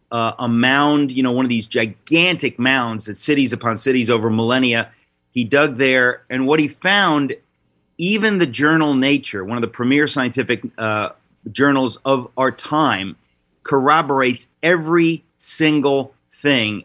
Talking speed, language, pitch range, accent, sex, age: 145 wpm, English, 115-145 Hz, American, male, 40-59